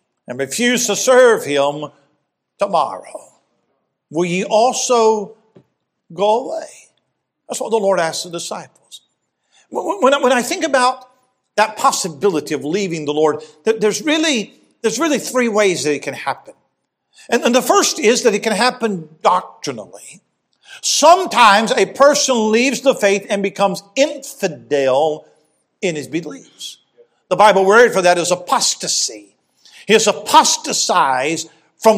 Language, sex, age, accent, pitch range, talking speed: English, male, 50-69, American, 195-255 Hz, 130 wpm